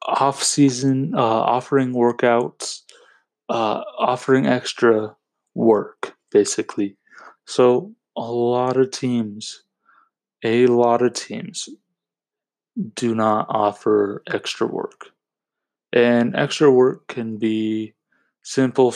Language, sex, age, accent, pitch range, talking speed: English, male, 20-39, American, 110-135 Hz, 90 wpm